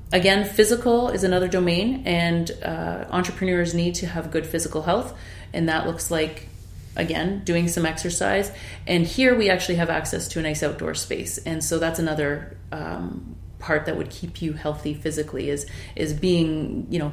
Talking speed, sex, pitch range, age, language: 175 wpm, female, 150-185 Hz, 30-49, English